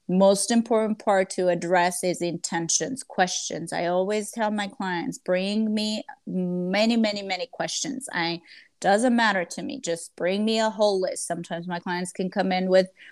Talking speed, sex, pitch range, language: 170 wpm, female, 180-210 Hz, English